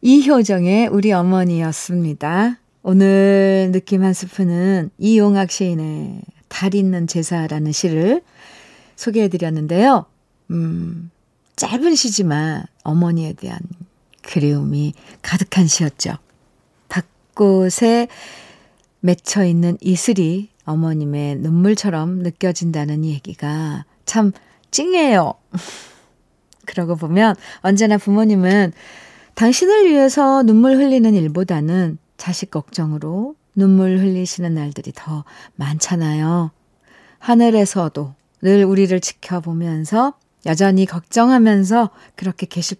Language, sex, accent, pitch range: Korean, female, native, 170-205 Hz